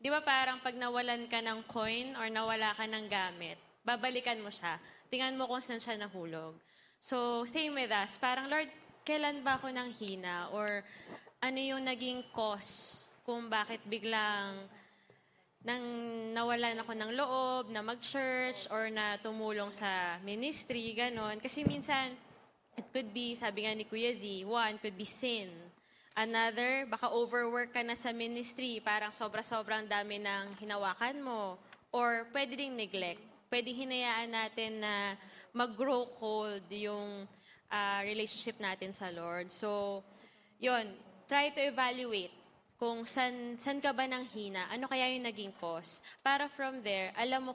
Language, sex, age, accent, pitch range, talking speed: Filipino, female, 20-39, native, 205-250 Hz, 150 wpm